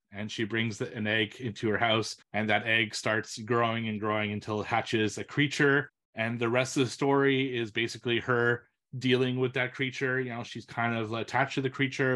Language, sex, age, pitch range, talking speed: English, male, 30-49, 110-130 Hz, 205 wpm